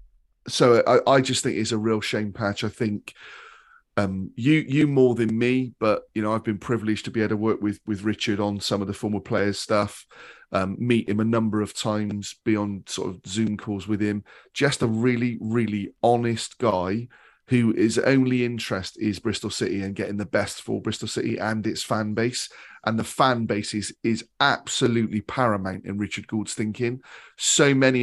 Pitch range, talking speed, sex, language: 105-125 Hz, 195 wpm, male, English